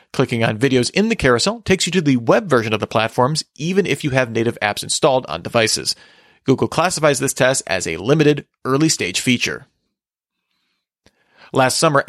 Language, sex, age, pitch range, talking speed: English, male, 40-59, 125-165 Hz, 175 wpm